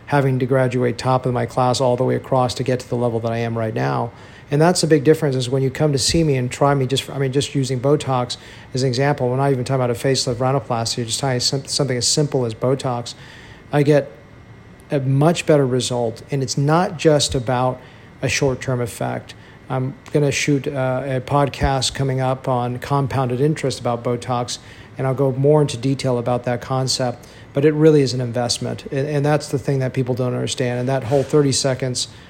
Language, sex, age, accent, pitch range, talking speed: English, male, 40-59, American, 120-140 Hz, 220 wpm